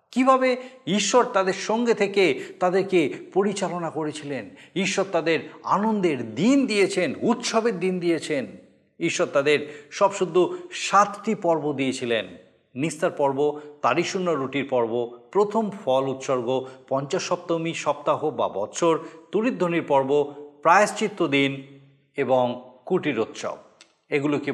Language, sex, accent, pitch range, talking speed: Bengali, male, native, 140-200 Hz, 105 wpm